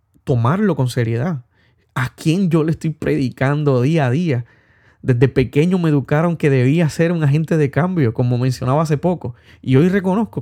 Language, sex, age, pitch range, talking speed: Spanish, male, 30-49, 115-150 Hz, 175 wpm